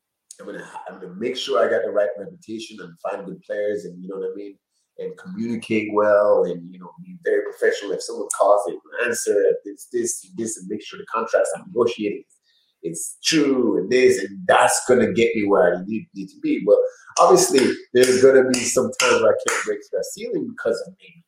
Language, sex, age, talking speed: English, male, 30-49, 225 wpm